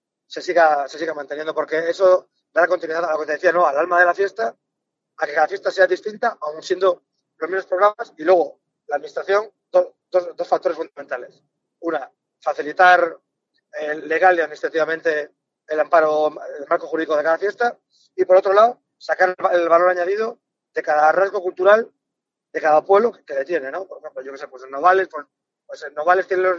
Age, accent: 30-49, Spanish